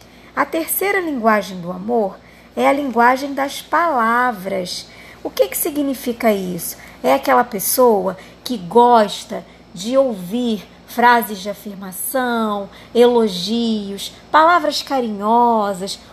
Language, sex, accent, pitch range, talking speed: Portuguese, male, Brazilian, 220-275 Hz, 105 wpm